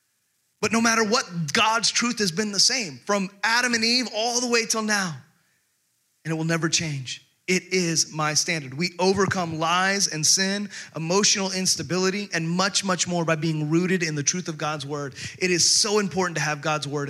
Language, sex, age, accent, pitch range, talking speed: English, male, 30-49, American, 150-200 Hz, 195 wpm